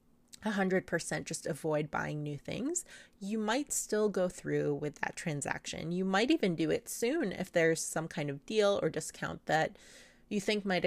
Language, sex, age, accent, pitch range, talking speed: English, female, 30-49, American, 150-200 Hz, 170 wpm